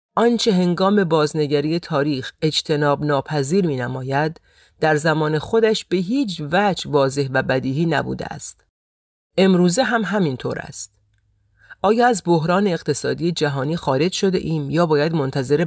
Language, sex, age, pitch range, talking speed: Persian, female, 40-59, 140-175 Hz, 125 wpm